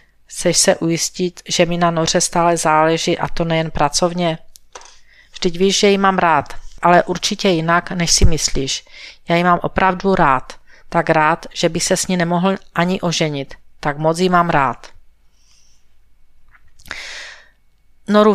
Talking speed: 150 wpm